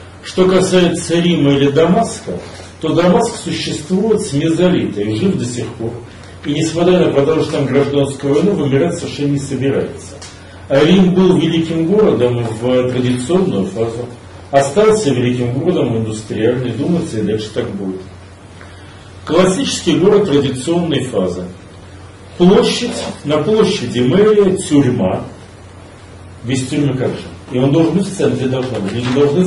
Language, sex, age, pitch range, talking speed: Russian, male, 40-59, 95-160 Hz, 130 wpm